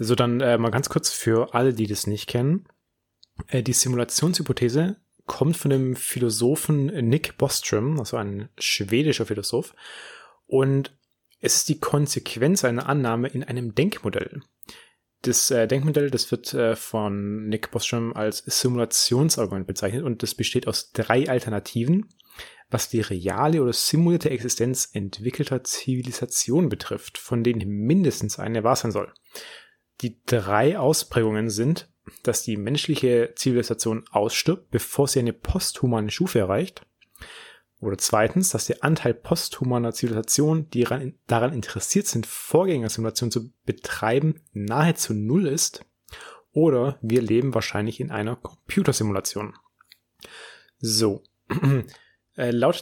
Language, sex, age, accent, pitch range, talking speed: German, male, 30-49, German, 115-140 Hz, 125 wpm